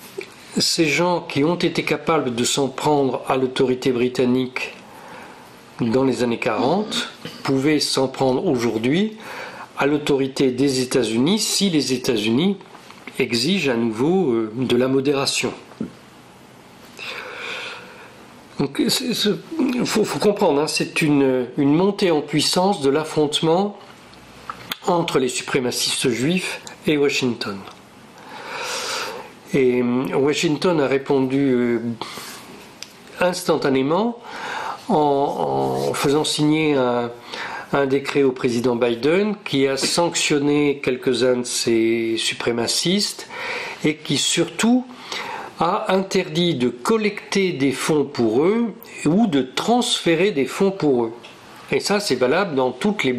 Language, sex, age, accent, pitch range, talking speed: Italian, male, 50-69, French, 130-190 Hz, 110 wpm